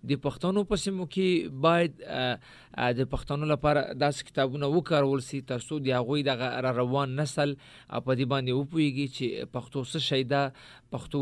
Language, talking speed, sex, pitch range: Urdu, 105 wpm, male, 130-150 Hz